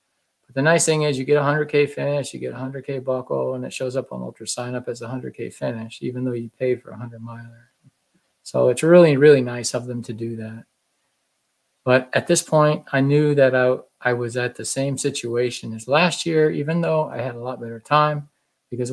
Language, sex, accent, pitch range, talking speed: English, male, American, 120-145 Hz, 220 wpm